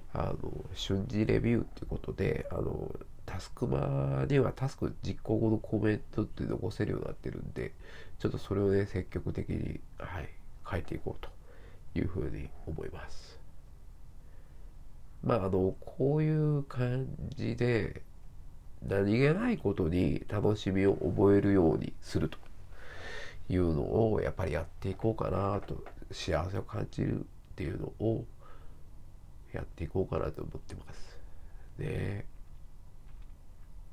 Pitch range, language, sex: 80-105 Hz, Japanese, male